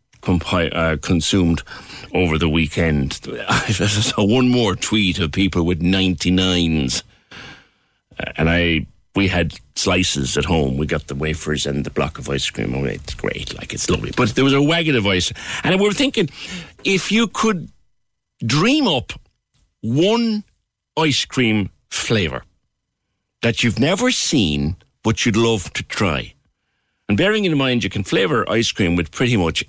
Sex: male